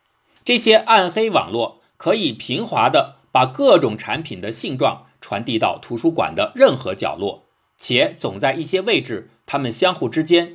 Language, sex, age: Chinese, male, 50-69